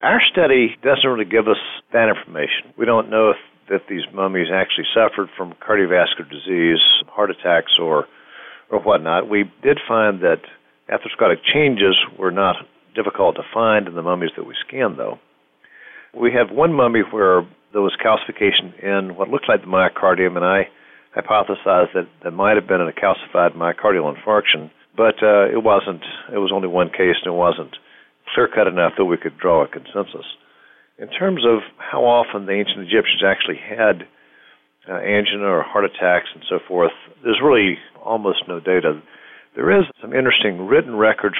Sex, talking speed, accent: male, 170 wpm, American